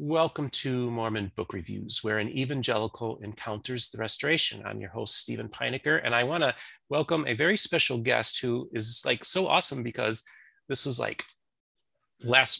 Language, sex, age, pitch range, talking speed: English, male, 30-49, 115-140 Hz, 165 wpm